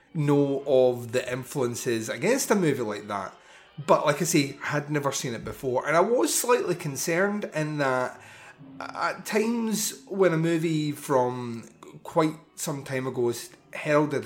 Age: 30-49